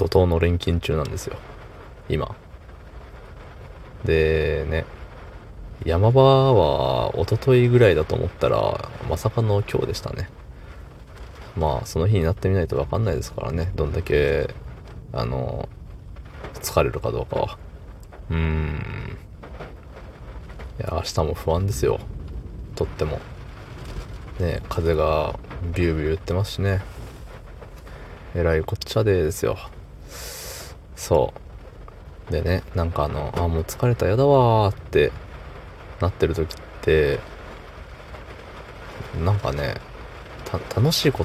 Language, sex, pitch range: Japanese, male, 80-110 Hz